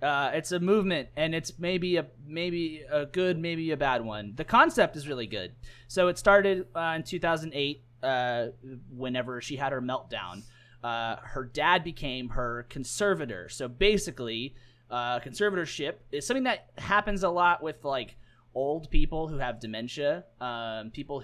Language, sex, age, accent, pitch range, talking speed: English, male, 30-49, American, 120-165 Hz, 160 wpm